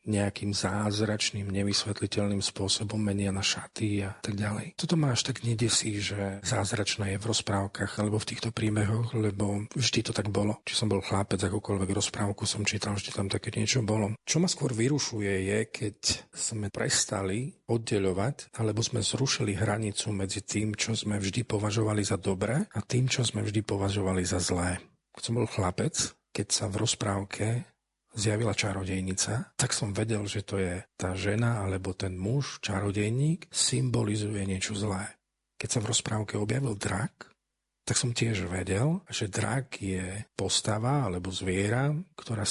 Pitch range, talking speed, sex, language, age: 95-115 Hz, 160 wpm, male, Slovak, 40-59